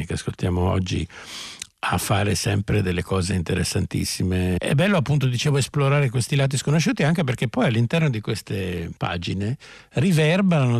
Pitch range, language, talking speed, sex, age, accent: 90-130 Hz, Italian, 140 wpm, male, 60-79, native